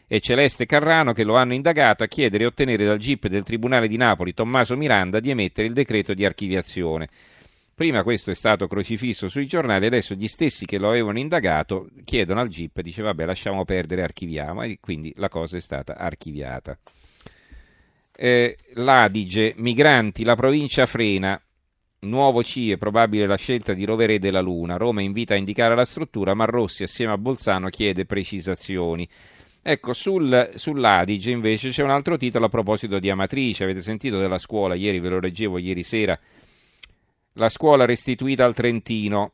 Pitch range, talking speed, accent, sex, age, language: 95-120 Hz, 165 wpm, native, male, 40-59, Italian